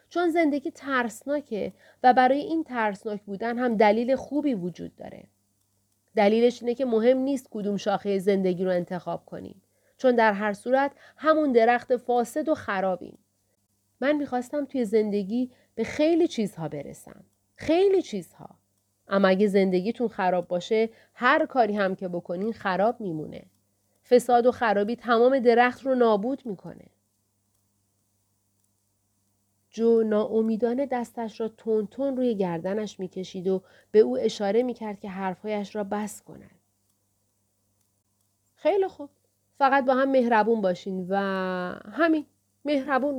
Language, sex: Persian, female